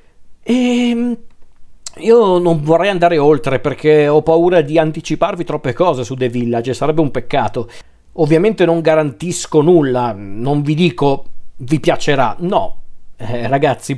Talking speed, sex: 135 wpm, male